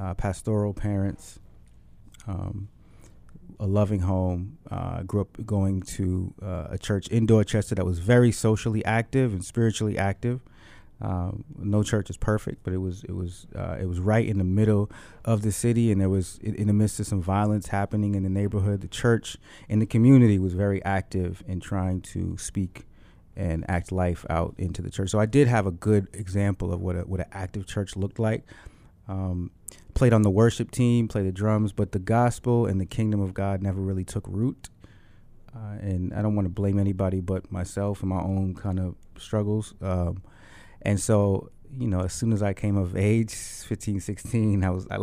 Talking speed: 195 wpm